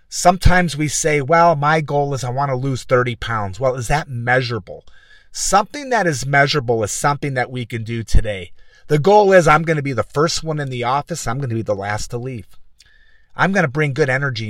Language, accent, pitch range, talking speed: English, American, 120-160 Hz, 230 wpm